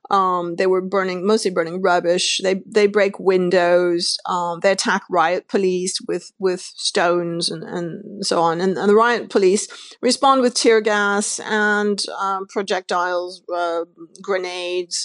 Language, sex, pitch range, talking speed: English, female, 180-210 Hz, 150 wpm